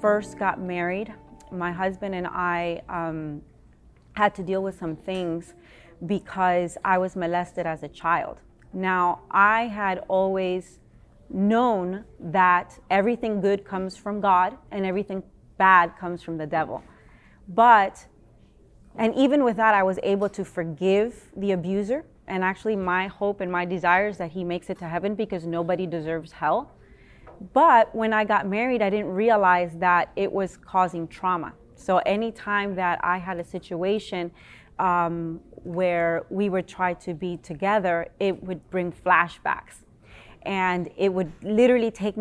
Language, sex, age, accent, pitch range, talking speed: English, female, 30-49, American, 175-205 Hz, 150 wpm